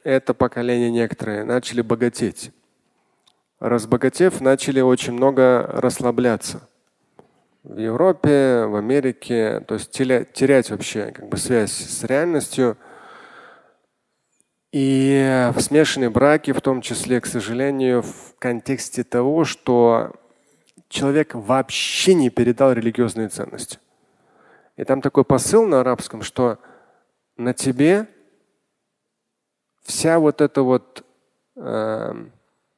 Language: Russian